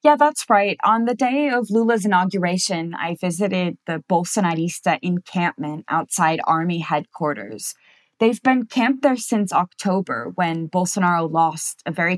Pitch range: 170-220 Hz